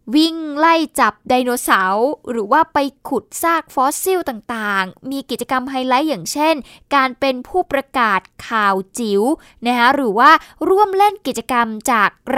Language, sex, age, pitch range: Thai, female, 10-29, 225-290 Hz